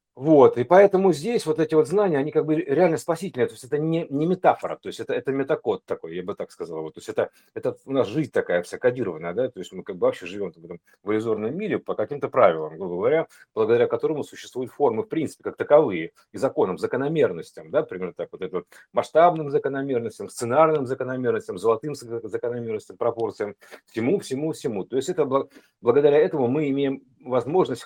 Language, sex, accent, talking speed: Russian, male, native, 200 wpm